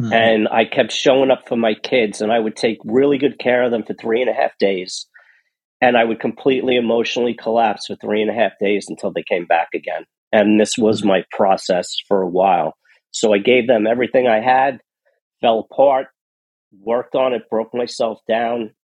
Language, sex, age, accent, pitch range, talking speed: English, male, 50-69, American, 110-130 Hz, 200 wpm